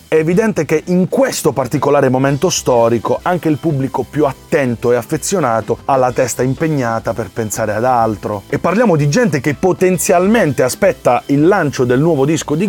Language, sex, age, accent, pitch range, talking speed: Italian, male, 30-49, native, 125-185 Hz, 170 wpm